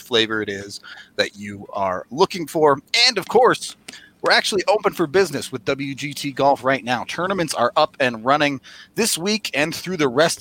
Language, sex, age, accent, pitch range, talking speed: English, male, 30-49, American, 130-170 Hz, 185 wpm